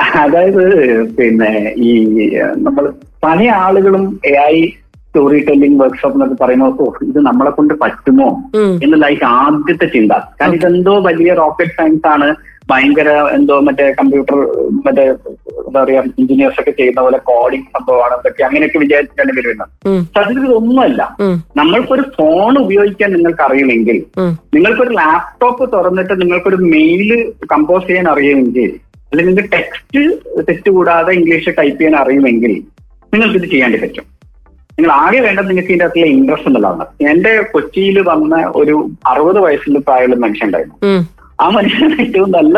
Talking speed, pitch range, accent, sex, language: 125 wpm, 145-220 Hz, native, male, Malayalam